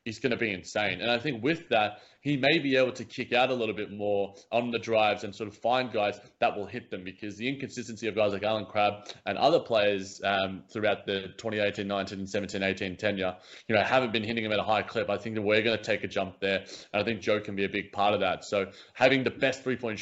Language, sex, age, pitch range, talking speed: English, male, 20-39, 105-120 Hz, 265 wpm